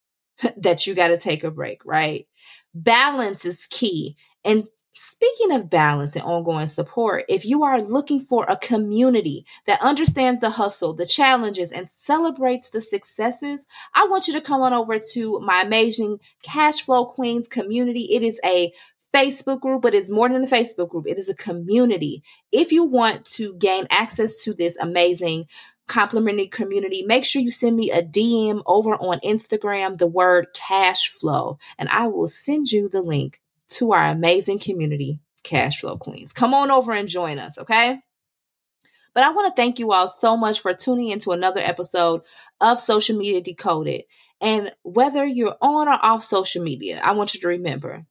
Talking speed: 175 wpm